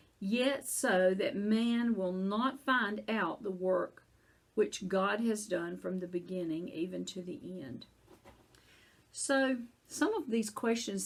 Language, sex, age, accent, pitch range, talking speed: English, female, 50-69, American, 185-225 Hz, 140 wpm